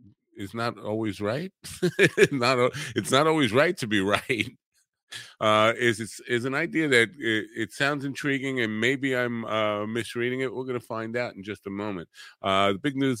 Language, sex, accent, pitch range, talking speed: English, male, American, 95-130 Hz, 185 wpm